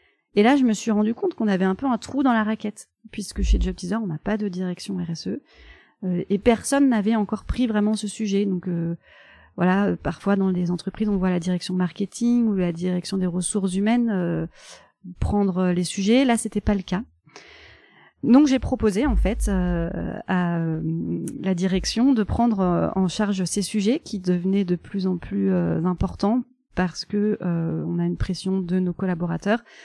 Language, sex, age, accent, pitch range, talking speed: French, female, 30-49, French, 180-215 Hz, 190 wpm